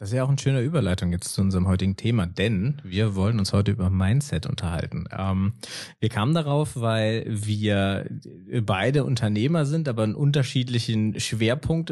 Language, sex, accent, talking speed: German, male, German, 165 wpm